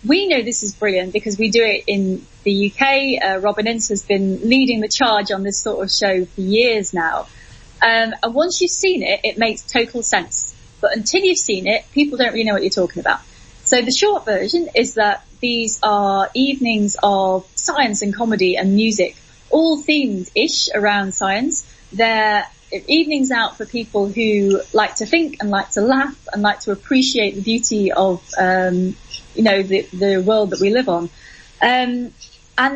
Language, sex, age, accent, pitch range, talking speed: English, female, 20-39, British, 200-255 Hz, 185 wpm